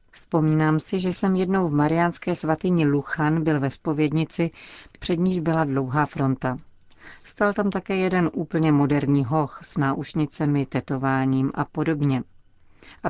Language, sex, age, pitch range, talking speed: Czech, female, 40-59, 140-170 Hz, 135 wpm